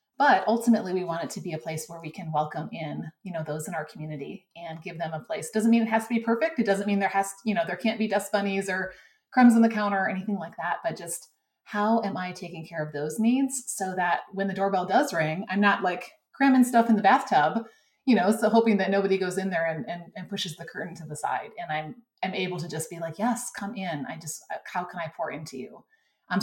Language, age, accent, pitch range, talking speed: English, 30-49, American, 170-225 Hz, 260 wpm